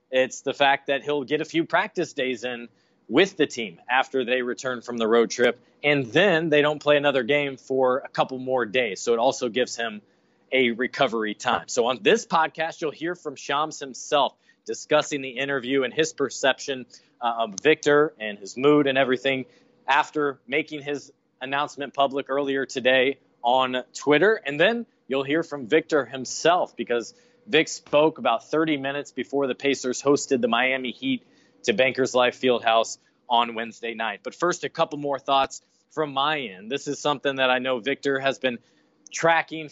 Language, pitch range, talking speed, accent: English, 130-150 Hz, 180 wpm, American